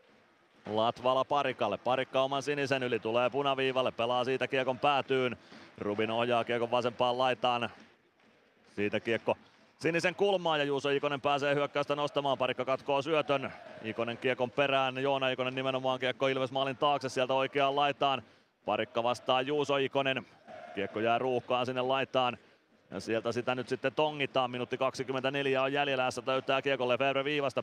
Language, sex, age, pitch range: Finnish, male, 30-49, 125-145 Hz